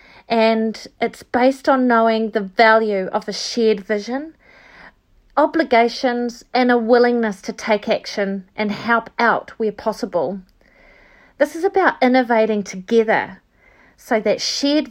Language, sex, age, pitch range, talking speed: English, female, 40-59, 205-250 Hz, 125 wpm